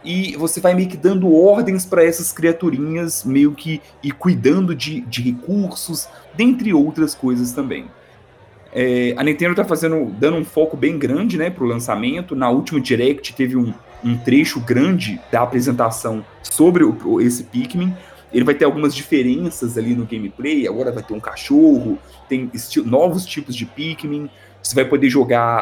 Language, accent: Portuguese, Brazilian